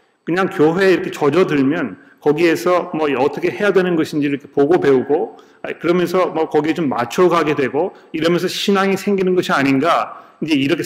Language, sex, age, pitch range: Korean, male, 40-59, 145-195 Hz